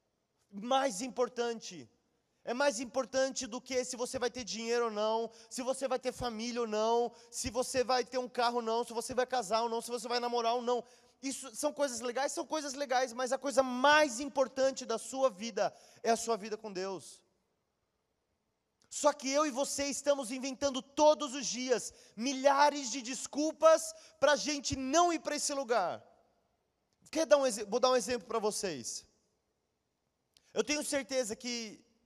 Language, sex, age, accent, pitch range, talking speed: Portuguese, male, 20-39, Brazilian, 205-265 Hz, 175 wpm